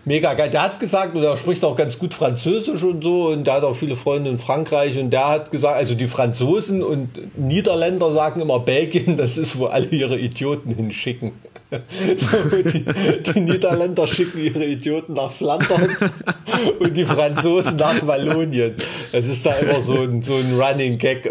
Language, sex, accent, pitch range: German, male, German, 120-160 Hz